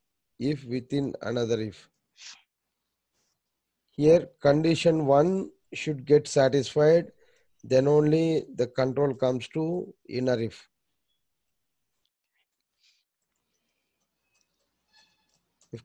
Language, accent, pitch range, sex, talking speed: English, Indian, 115-150 Hz, male, 70 wpm